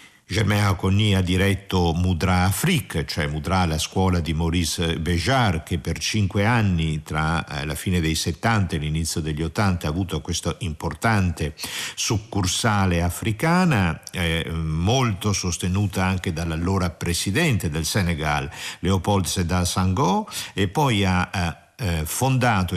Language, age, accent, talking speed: Italian, 50-69, native, 125 wpm